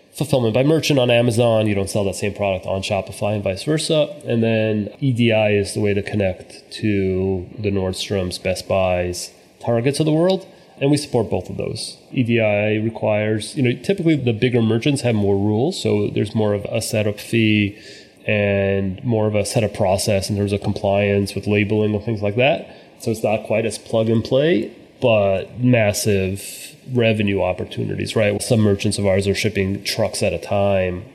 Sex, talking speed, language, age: male, 185 wpm, English, 30-49